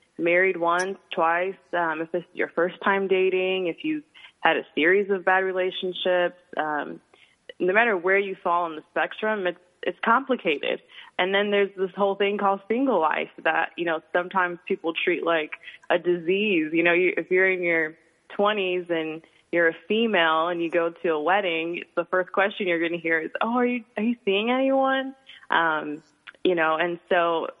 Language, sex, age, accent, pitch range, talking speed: English, female, 20-39, American, 165-195 Hz, 190 wpm